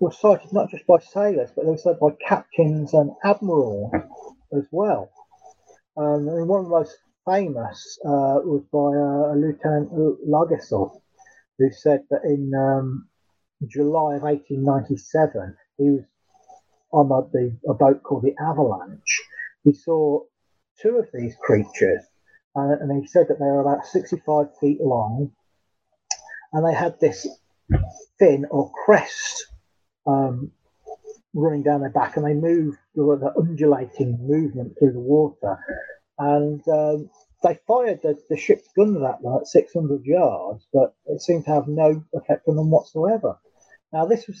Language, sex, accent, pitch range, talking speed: English, male, British, 140-180 Hz, 150 wpm